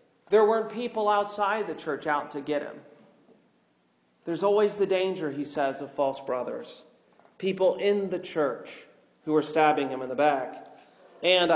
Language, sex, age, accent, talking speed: English, male, 40-59, American, 160 wpm